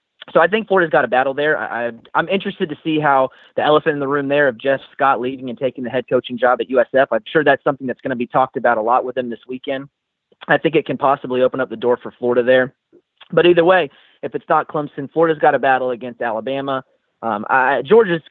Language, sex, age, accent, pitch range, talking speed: English, male, 30-49, American, 125-155 Hz, 245 wpm